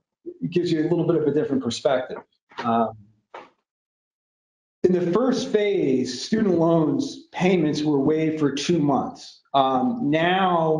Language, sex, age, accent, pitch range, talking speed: English, male, 40-59, American, 145-180 Hz, 140 wpm